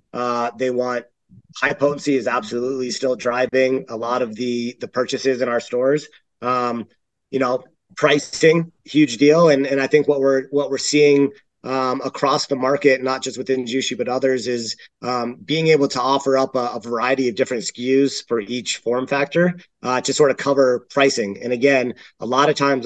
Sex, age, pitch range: male, 30-49, 125-140 Hz